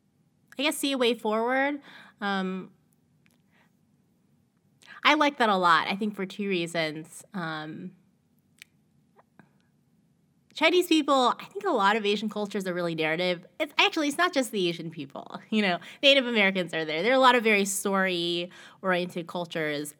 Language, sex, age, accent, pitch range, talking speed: English, female, 20-39, American, 175-230 Hz, 155 wpm